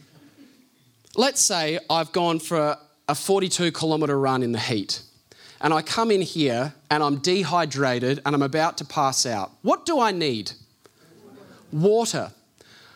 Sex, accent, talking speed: male, Australian, 145 wpm